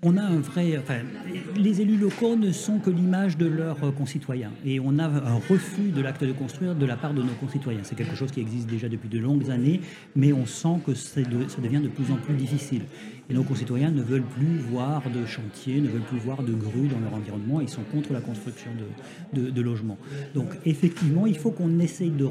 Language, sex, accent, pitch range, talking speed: French, male, French, 125-160 Hz, 230 wpm